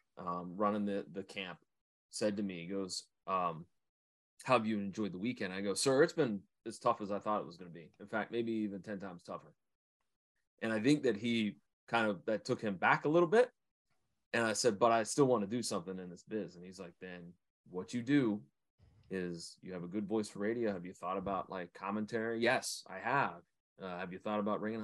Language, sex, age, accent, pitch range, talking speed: English, male, 30-49, American, 95-125 Hz, 230 wpm